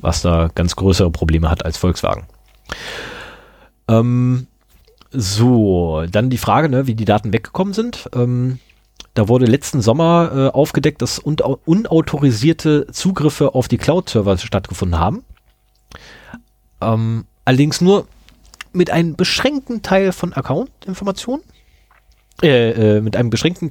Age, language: 30-49, German